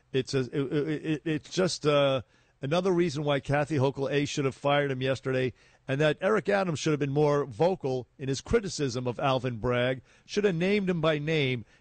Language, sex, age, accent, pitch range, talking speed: English, male, 50-69, American, 130-160 Hz, 185 wpm